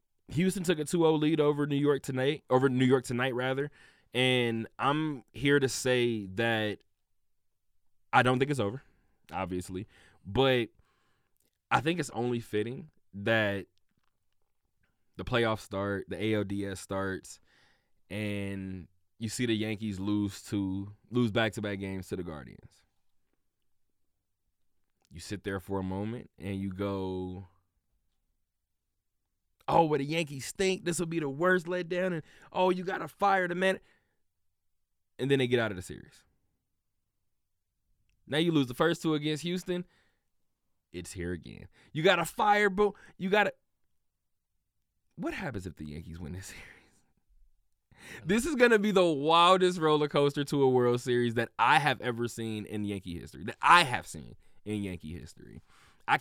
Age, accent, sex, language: 20-39, American, male, English